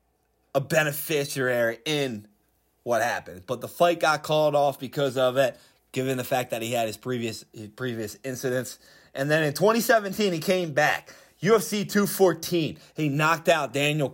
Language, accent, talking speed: English, American, 160 wpm